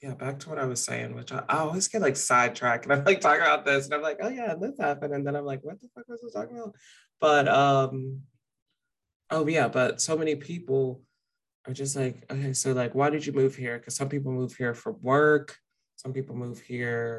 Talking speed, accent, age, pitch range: 235 wpm, American, 20-39, 125-150 Hz